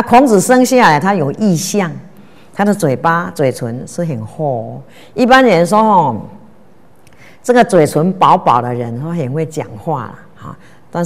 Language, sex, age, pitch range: Chinese, female, 50-69, 130-175 Hz